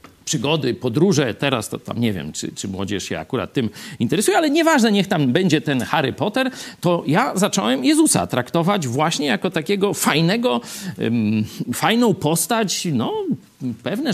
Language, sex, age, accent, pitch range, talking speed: Polish, male, 50-69, native, 130-205 Hz, 150 wpm